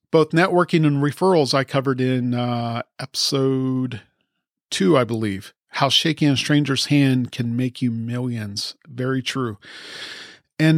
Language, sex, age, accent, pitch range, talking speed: English, male, 40-59, American, 135-195 Hz, 135 wpm